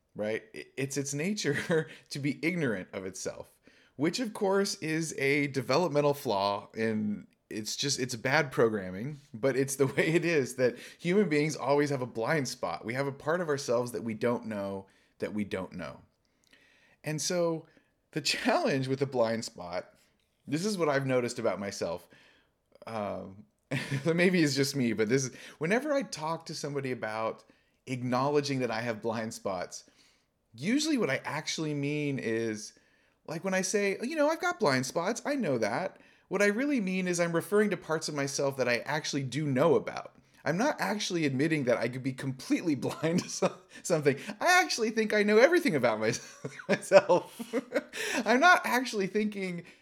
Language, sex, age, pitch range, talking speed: English, male, 30-49, 130-190 Hz, 175 wpm